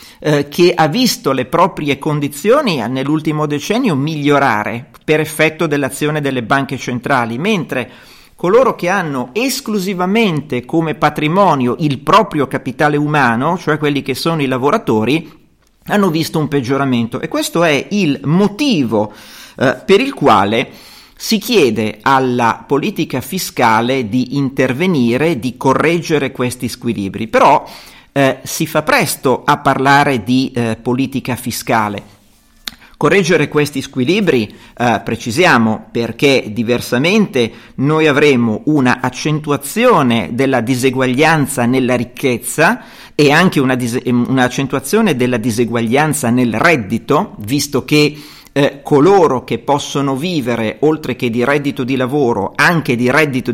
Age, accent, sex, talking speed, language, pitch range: 40-59, native, male, 115 wpm, Italian, 125-155 Hz